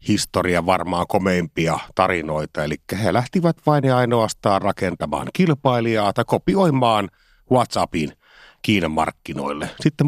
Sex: male